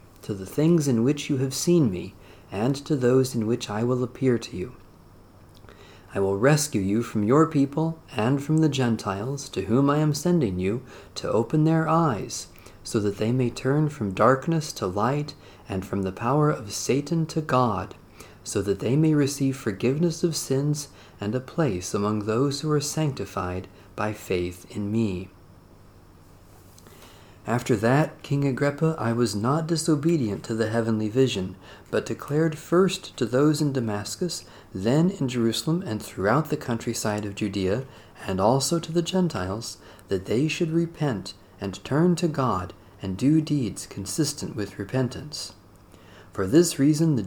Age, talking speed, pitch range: 40-59, 160 wpm, 100-145 Hz